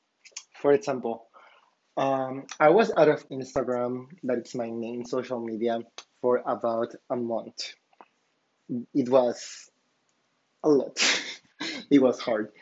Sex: male